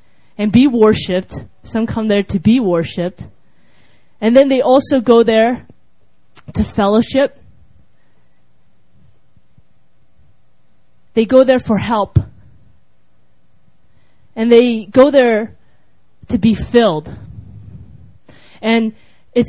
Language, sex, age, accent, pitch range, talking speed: English, female, 20-39, American, 185-235 Hz, 95 wpm